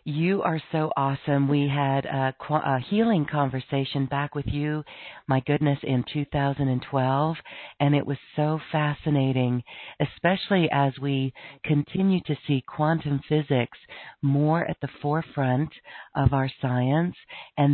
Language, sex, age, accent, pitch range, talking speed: English, female, 50-69, American, 135-155 Hz, 130 wpm